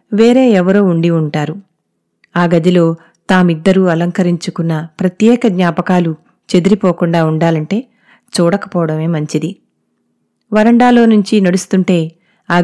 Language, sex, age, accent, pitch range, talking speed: Telugu, female, 30-49, native, 170-215 Hz, 80 wpm